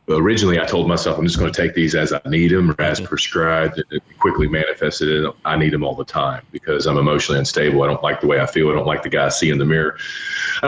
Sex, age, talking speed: male, 40-59, 275 wpm